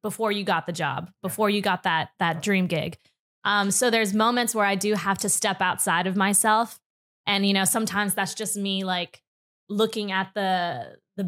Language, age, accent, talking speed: English, 20-39, American, 195 wpm